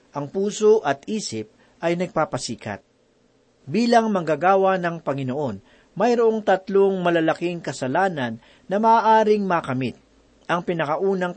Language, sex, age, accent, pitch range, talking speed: Filipino, male, 40-59, native, 145-200 Hz, 100 wpm